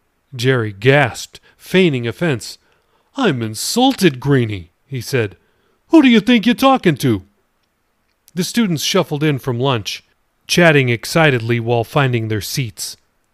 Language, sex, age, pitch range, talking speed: English, male, 40-59, 120-160 Hz, 125 wpm